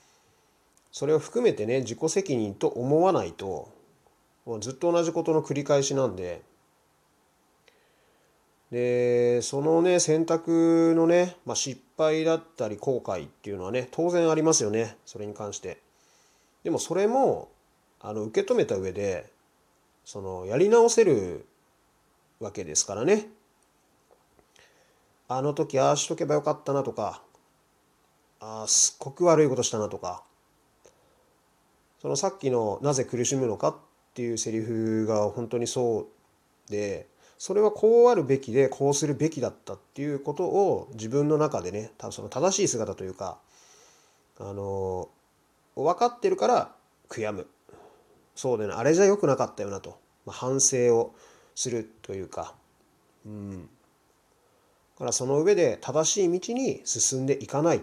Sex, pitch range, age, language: male, 115-165 Hz, 30-49, Japanese